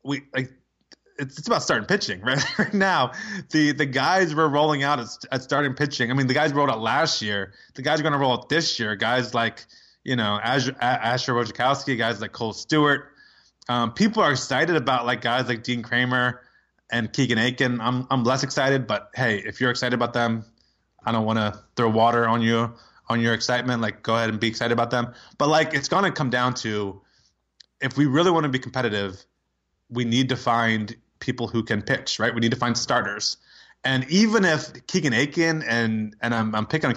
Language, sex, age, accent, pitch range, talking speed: English, male, 20-39, American, 115-140 Hz, 215 wpm